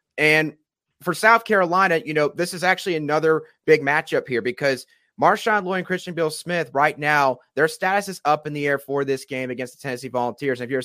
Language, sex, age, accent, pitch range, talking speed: English, male, 30-49, American, 130-155 Hz, 215 wpm